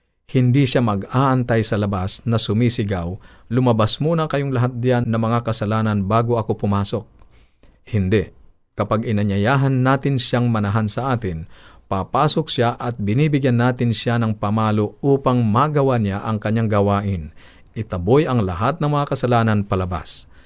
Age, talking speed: 50-69, 140 wpm